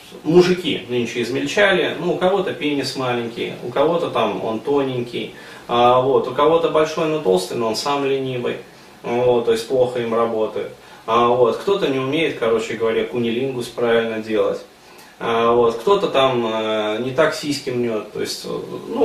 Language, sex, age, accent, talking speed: Russian, male, 20-39, native, 140 wpm